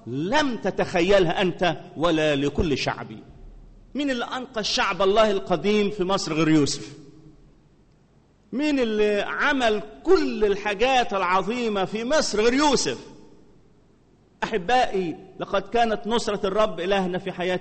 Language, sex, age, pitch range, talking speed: English, male, 40-59, 160-230 Hz, 115 wpm